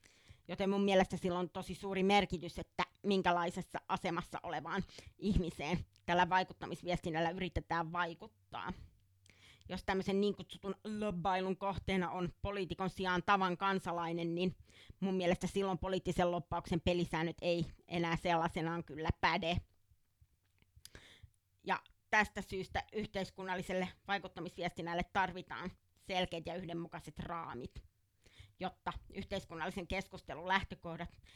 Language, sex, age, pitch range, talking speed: Finnish, female, 30-49, 170-195 Hz, 105 wpm